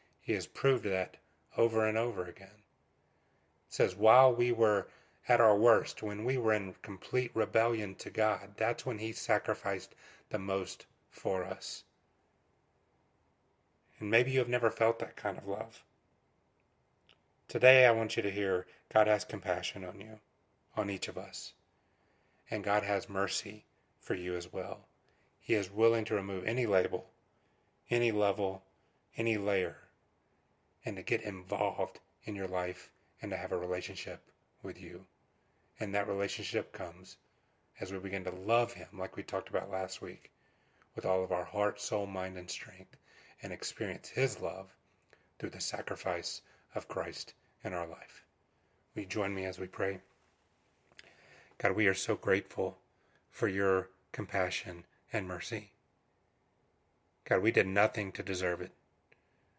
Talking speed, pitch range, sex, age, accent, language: 150 wpm, 95-110 Hz, male, 30-49, American, English